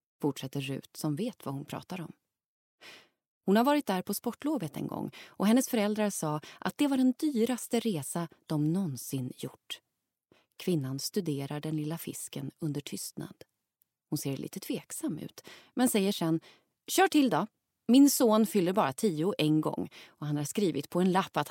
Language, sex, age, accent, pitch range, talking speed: English, female, 30-49, Swedish, 150-230 Hz, 175 wpm